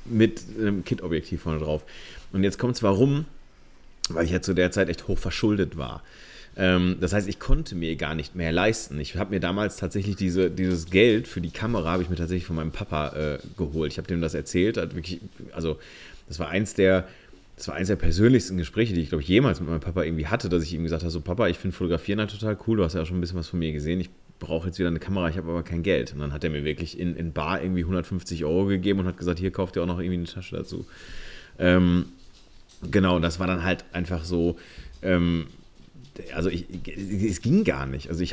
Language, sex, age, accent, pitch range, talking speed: German, male, 30-49, German, 85-100 Hz, 240 wpm